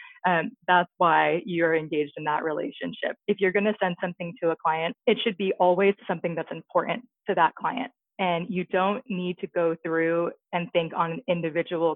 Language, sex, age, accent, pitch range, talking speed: English, female, 20-39, American, 165-190 Hz, 190 wpm